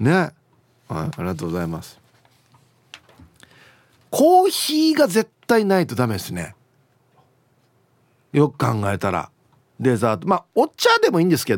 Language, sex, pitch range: Japanese, male, 120-180 Hz